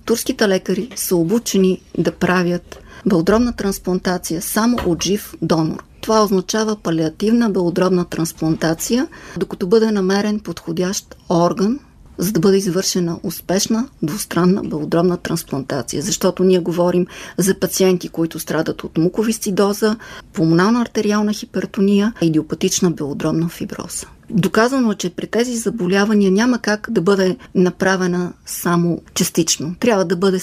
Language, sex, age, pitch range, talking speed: Bulgarian, female, 30-49, 175-205 Hz, 115 wpm